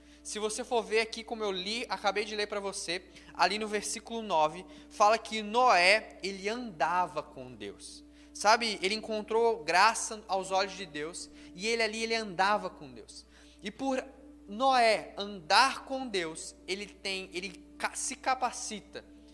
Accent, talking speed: Brazilian, 155 wpm